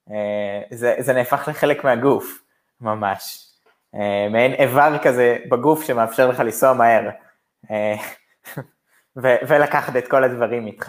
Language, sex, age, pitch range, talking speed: Hebrew, male, 20-39, 115-155 Hz, 125 wpm